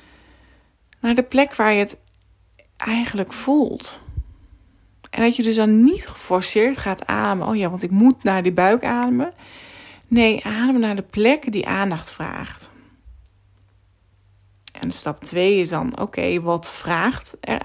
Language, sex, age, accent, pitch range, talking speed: Dutch, female, 20-39, Dutch, 175-235 Hz, 145 wpm